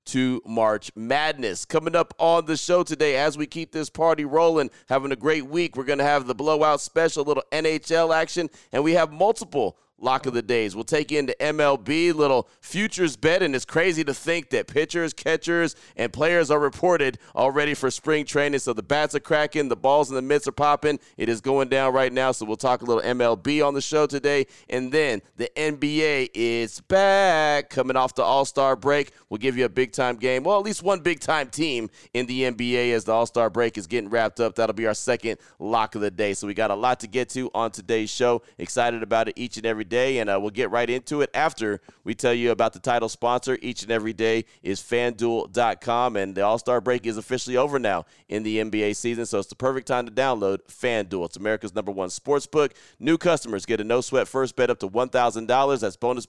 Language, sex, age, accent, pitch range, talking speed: English, male, 30-49, American, 115-150 Hz, 225 wpm